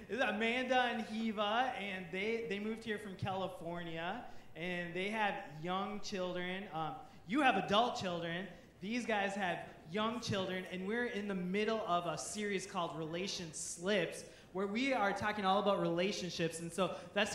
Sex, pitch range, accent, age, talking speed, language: male, 165-205 Hz, American, 20-39, 165 wpm, English